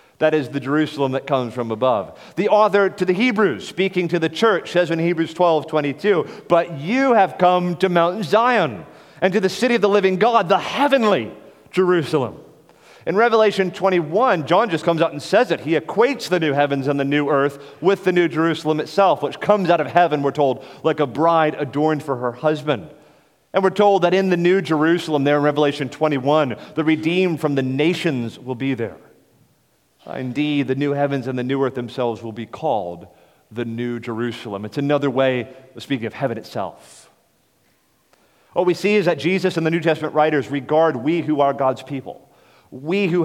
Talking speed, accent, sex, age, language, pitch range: 195 wpm, American, male, 40-59, English, 140-180 Hz